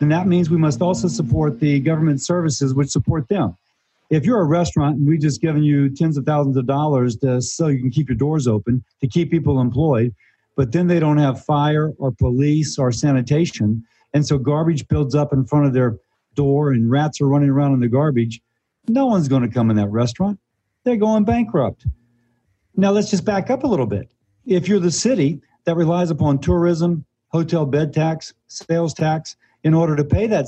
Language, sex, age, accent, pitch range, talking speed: English, male, 50-69, American, 130-160 Hz, 205 wpm